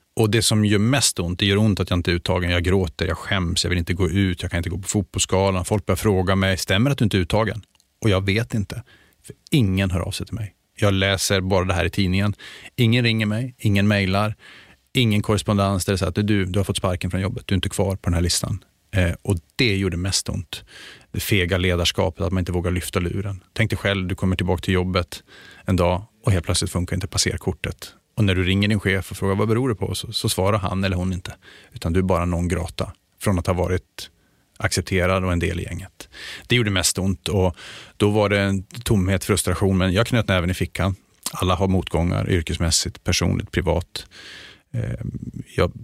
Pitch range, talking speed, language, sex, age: 90-105 Hz, 225 wpm, Swedish, male, 30-49